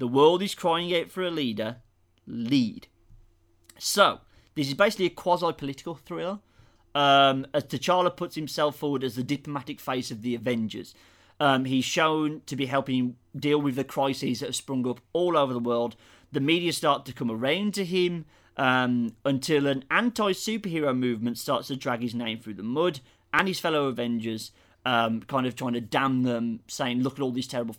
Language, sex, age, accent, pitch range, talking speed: English, male, 30-49, British, 120-155 Hz, 185 wpm